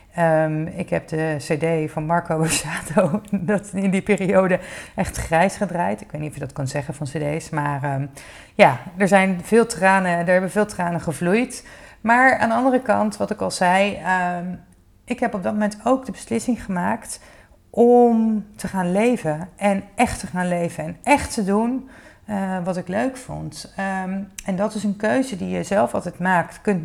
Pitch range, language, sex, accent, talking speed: 165-210 Hz, Dutch, female, Dutch, 180 wpm